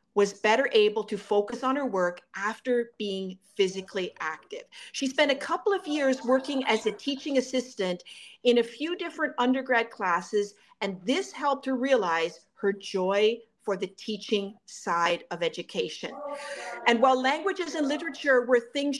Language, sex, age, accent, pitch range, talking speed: English, female, 40-59, American, 200-265 Hz, 155 wpm